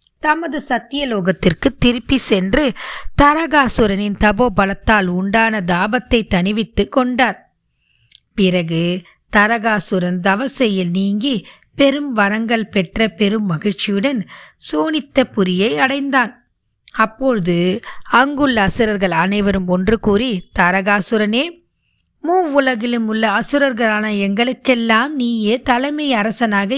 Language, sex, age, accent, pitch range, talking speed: Tamil, female, 20-39, native, 195-250 Hz, 80 wpm